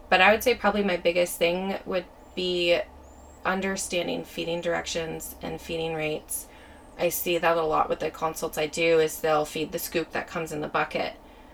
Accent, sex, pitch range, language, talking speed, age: American, female, 160-185 Hz, English, 185 wpm, 20-39